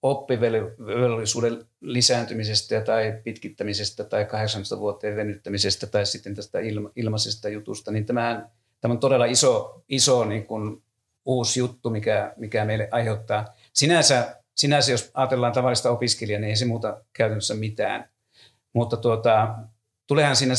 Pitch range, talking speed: 110-130 Hz, 125 wpm